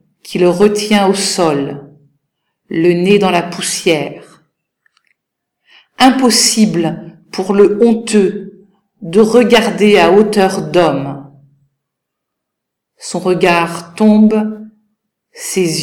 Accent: French